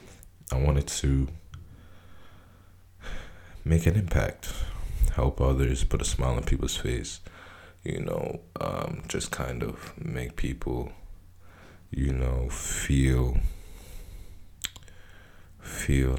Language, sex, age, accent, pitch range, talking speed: English, male, 20-39, American, 70-90 Hz, 95 wpm